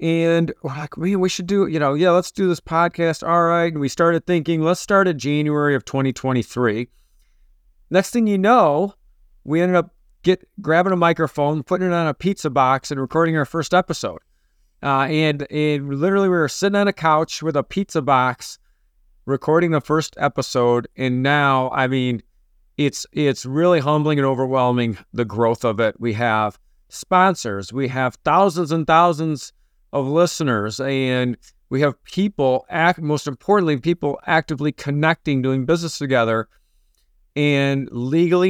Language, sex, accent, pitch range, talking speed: English, male, American, 125-165 Hz, 165 wpm